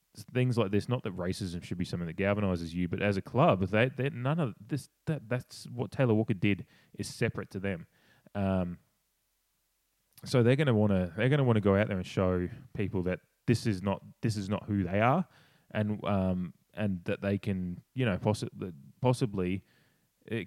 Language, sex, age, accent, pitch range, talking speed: English, male, 20-39, Australian, 95-120 Hz, 205 wpm